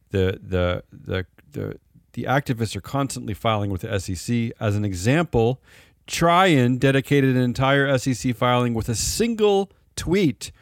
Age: 40-59